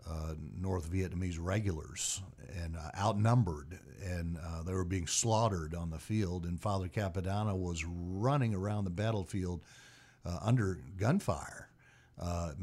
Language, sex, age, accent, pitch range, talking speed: English, male, 60-79, American, 85-105 Hz, 135 wpm